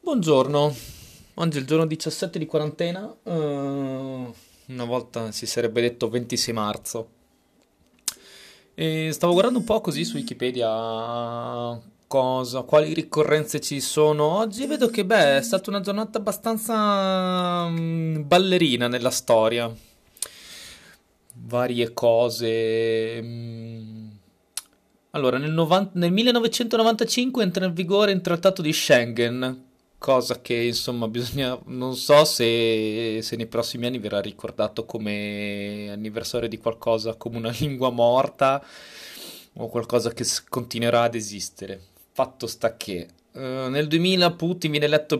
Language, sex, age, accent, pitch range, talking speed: Italian, male, 20-39, native, 115-155 Hz, 120 wpm